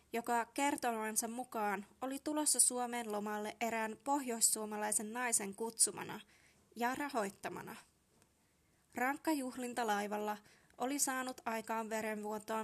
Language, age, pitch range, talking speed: Finnish, 20-39, 220-255 Hz, 85 wpm